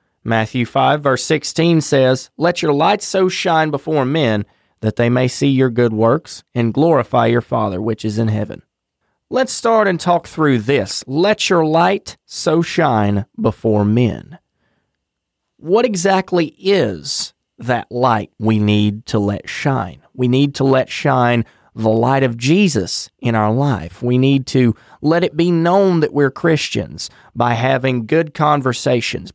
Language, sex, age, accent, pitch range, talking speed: English, male, 30-49, American, 115-160 Hz, 155 wpm